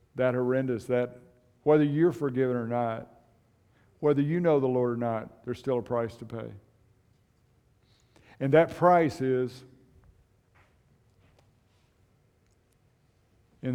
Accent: American